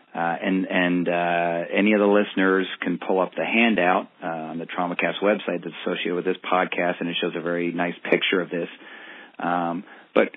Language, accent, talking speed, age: English, American, 195 wpm, 40-59